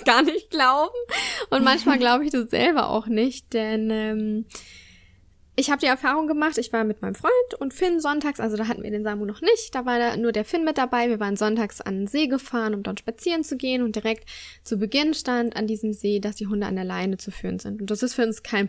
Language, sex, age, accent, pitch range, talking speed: German, female, 10-29, German, 210-265 Hz, 245 wpm